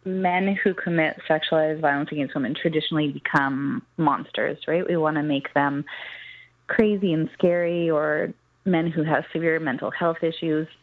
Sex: female